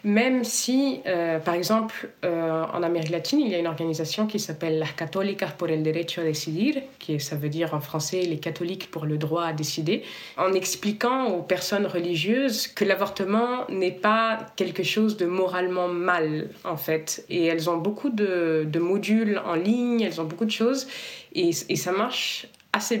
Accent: French